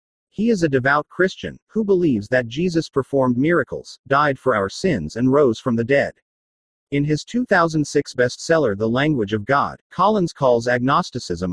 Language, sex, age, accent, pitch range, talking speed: English, male, 40-59, American, 120-160 Hz, 160 wpm